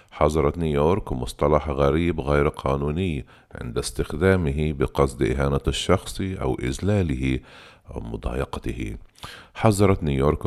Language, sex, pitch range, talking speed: Arabic, male, 65-85 Hz, 95 wpm